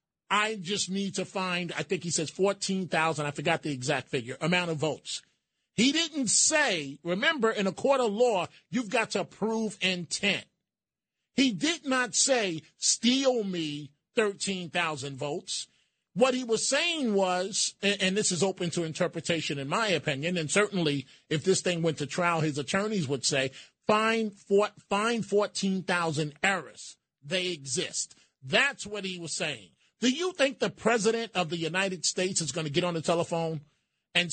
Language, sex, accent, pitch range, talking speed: English, male, American, 160-210 Hz, 165 wpm